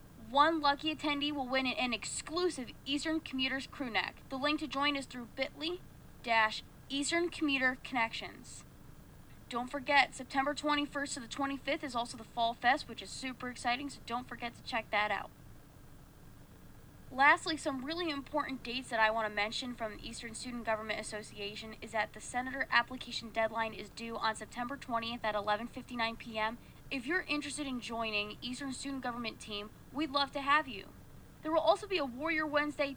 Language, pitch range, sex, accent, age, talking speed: English, 230-285 Hz, female, American, 20-39, 165 wpm